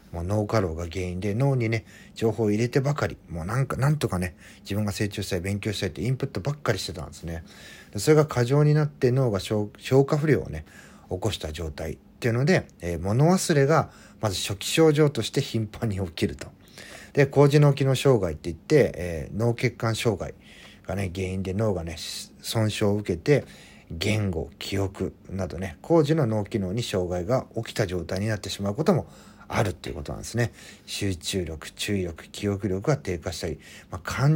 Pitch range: 90-125 Hz